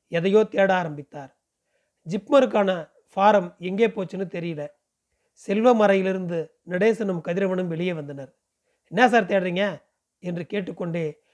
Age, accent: 30-49, native